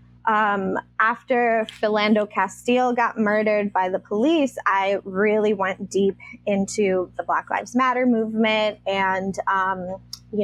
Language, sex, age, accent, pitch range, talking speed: English, female, 20-39, American, 185-230 Hz, 125 wpm